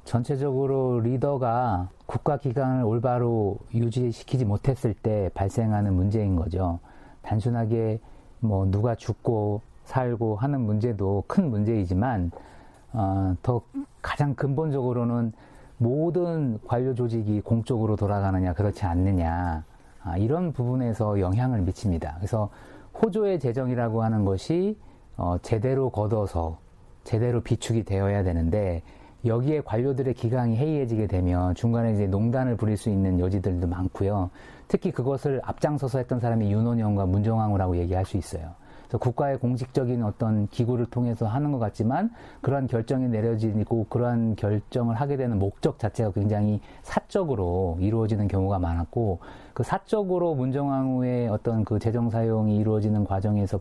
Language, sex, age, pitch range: Korean, male, 40-59, 100-125 Hz